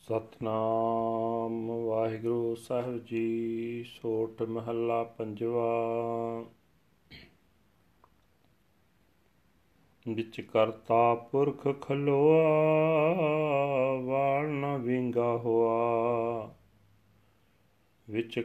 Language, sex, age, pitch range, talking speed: Punjabi, male, 40-59, 115-140 Hz, 45 wpm